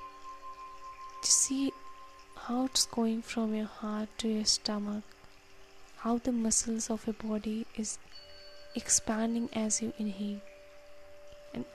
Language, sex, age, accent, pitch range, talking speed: English, female, 10-29, Indian, 185-235 Hz, 110 wpm